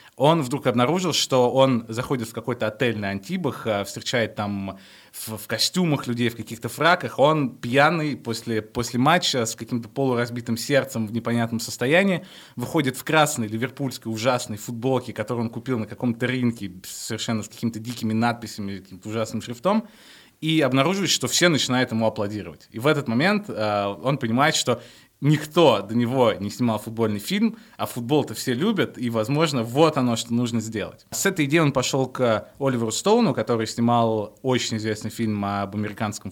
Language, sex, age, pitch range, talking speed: Russian, male, 20-39, 110-135 Hz, 165 wpm